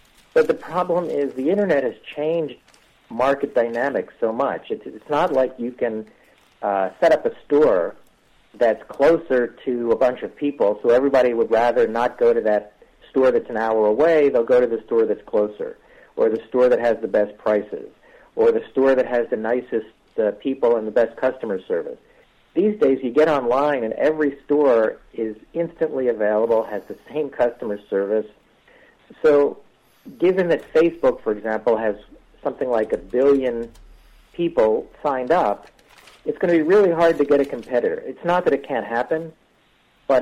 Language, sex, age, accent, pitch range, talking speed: English, male, 50-69, American, 115-180 Hz, 180 wpm